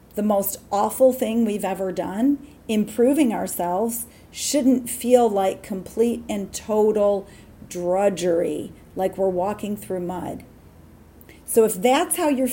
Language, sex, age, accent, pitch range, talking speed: English, female, 40-59, American, 190-255 Hz, 125 wpm